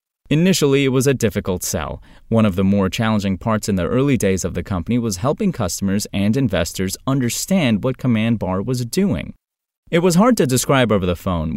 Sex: male